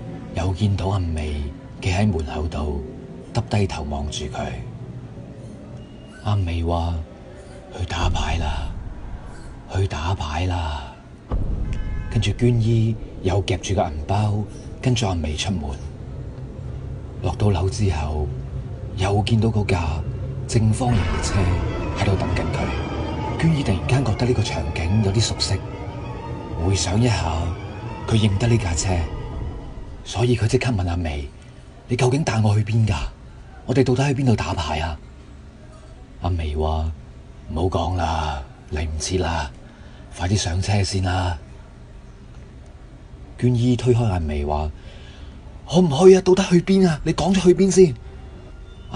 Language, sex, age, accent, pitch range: Chinese, male, 30-49, native, 80-110 Hz